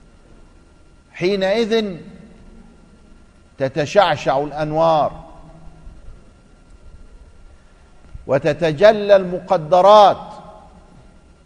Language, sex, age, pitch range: Arabic, male, 50-69, 125-190 Hz